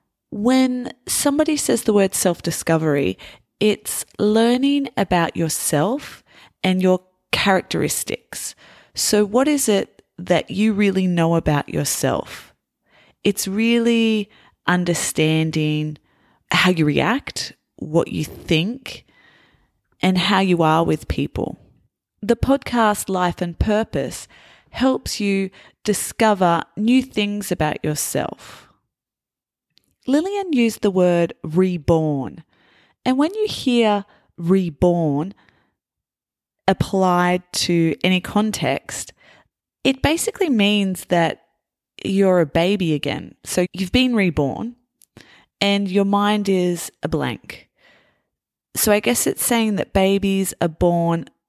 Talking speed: 105 wpm